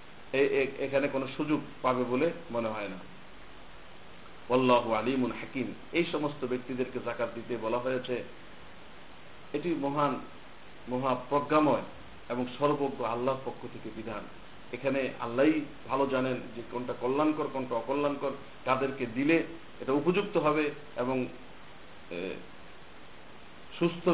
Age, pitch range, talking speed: 50-69, 125-145 Hz, 100 wpm